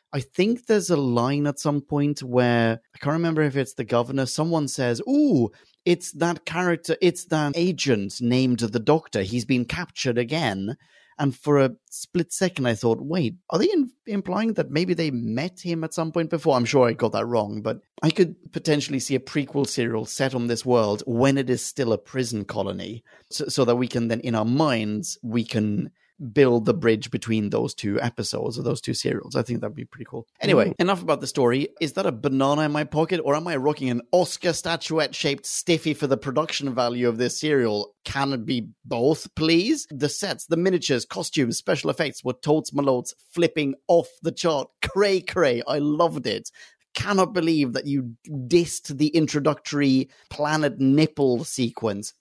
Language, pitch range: English, 120-165 Hz